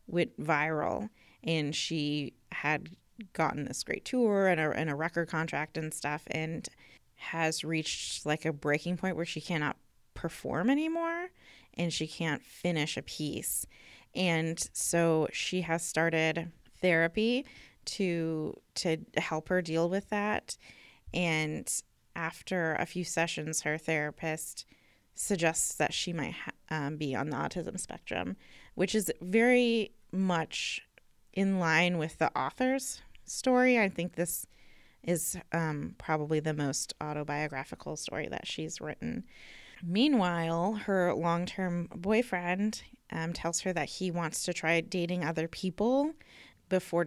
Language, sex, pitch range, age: English, female, 155-185 Hz, 20-39